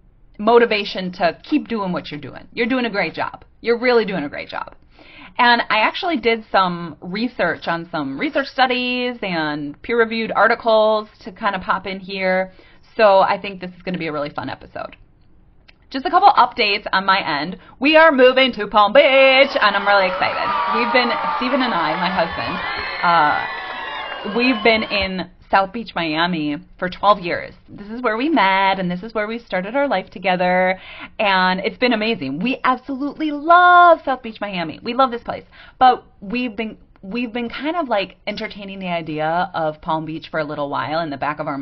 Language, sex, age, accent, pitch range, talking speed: English, female, 30-49, American, 170-235 Hz, 195 wpm